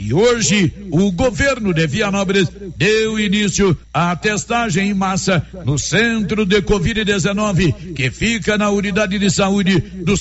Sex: male